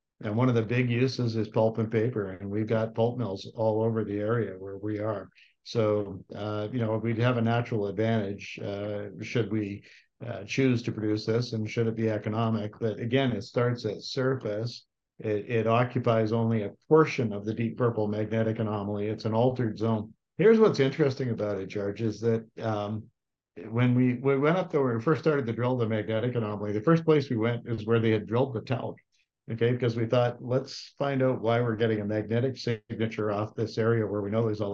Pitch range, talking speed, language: 105-120 Hz, 210 wpm, English